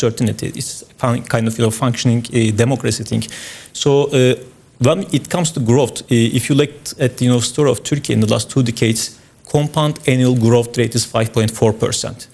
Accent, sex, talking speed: Turkish, male, 195 wpm